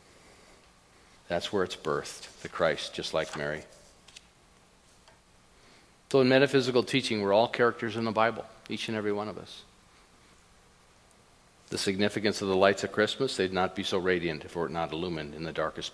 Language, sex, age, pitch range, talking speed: English, male, 50-69, 90-120 Hz, 185 wpm